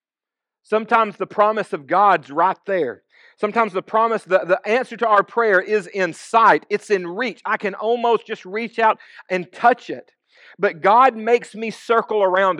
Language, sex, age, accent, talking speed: English, male, 40-59, American, 175 wpm